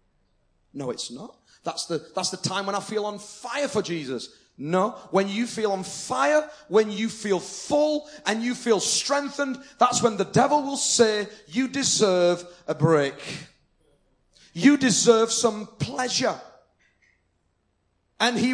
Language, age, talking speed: English, 30-49, 145 wpm